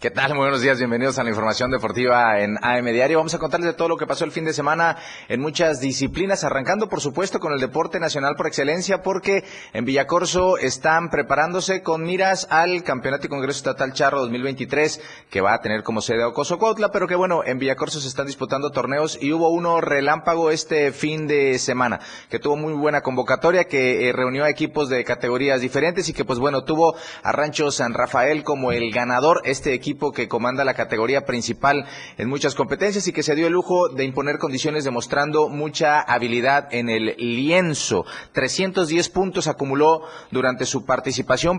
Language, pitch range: Spanish, 130-160 Hz